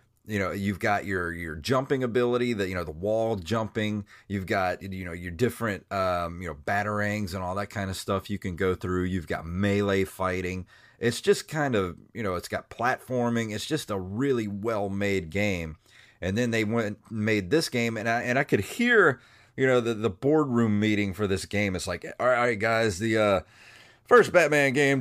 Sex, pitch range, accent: male, 100-125 Hz, American